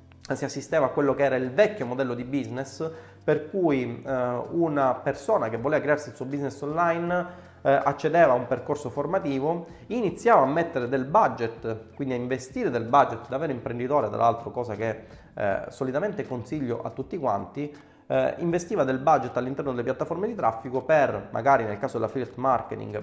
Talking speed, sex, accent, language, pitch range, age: 170 wpm, male, native, Italian, 115-150 Hz, 30-49